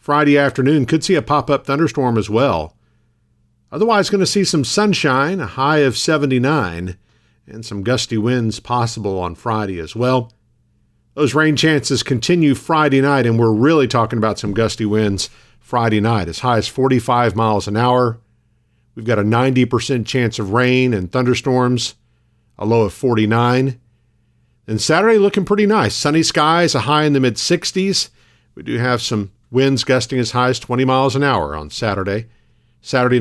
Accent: American